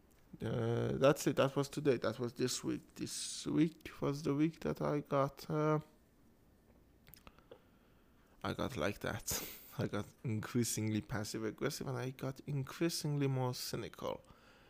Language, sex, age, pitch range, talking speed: English, male, 20-39, 110-150 Hz, 135 wpm